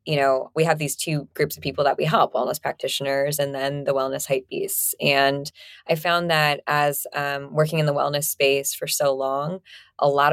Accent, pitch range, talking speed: American, 140-160 Hz, 210 wpm